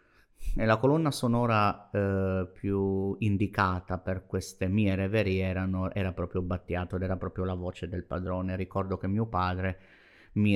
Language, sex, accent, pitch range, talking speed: Italian, male, native, 90-100 Hz, 155 wpm